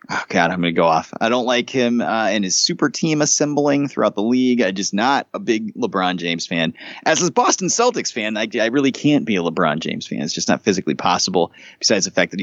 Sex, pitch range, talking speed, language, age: male, 100-160 Hz, 245 wpm, English, 30-49